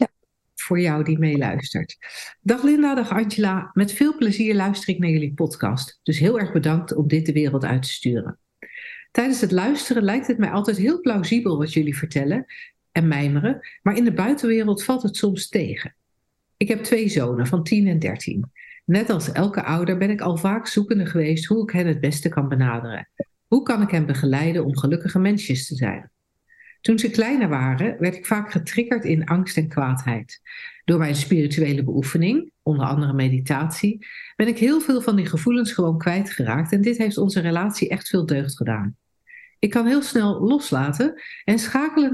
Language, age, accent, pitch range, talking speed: Dutch, 50-69, Dutch, 155-230 Hz, 180 wpm